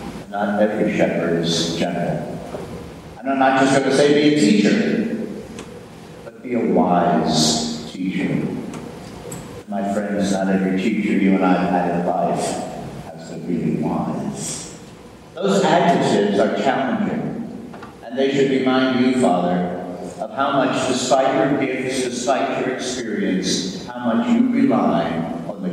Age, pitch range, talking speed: 50-69, 85-105 Hz, 140 wpm